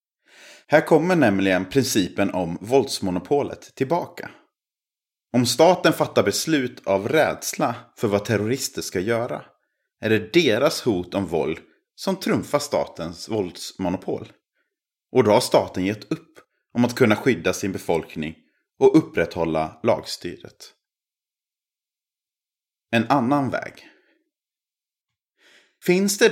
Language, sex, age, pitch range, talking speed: Swedish, male, 30-49, 95-155 Hz, 110 wpm